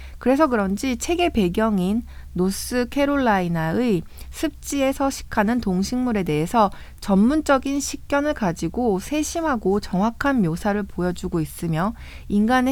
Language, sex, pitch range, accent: Korean, female, 180-260 Hz, native